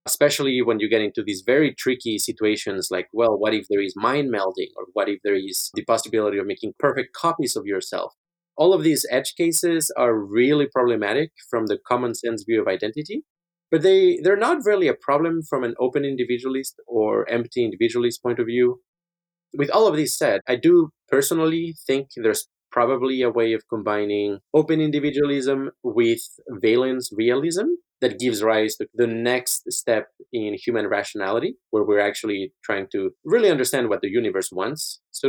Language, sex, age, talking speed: English, male, 30-49, 175 wpm